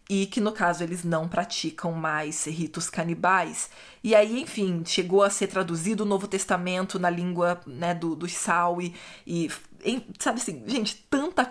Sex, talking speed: female, 160 wpm